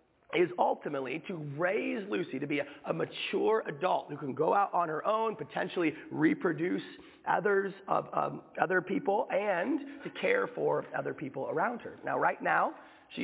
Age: 30-49